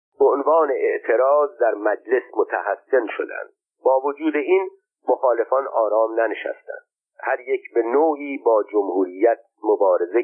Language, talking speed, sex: Persian, 110 wpm, male